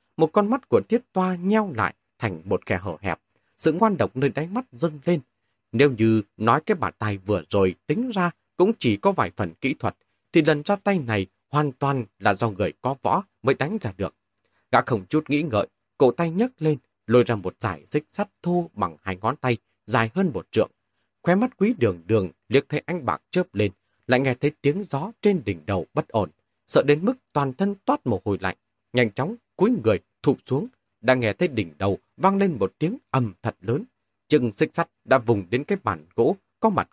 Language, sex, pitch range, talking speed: Vietnamese, male, 105-175 Hz, 225 wpm